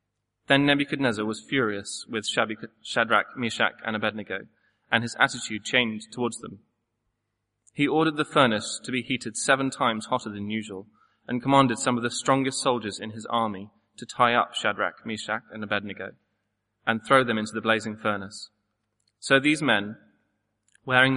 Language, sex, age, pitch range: English, male, 20-39, 105-130 Hz